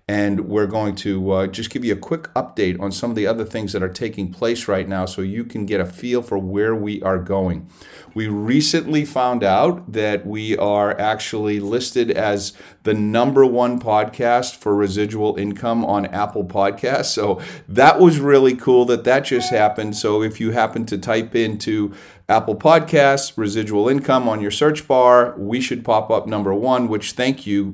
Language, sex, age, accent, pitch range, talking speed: English, male, 40-59, American, 100-115 Hz, 190 wpm